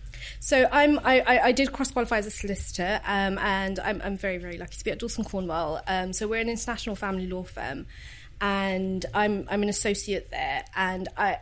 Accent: British